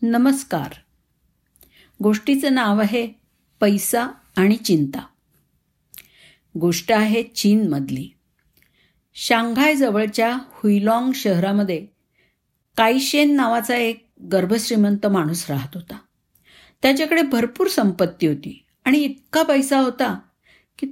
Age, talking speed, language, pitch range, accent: 50-69, 85 wpm, Marathi, 185-245 Hz, native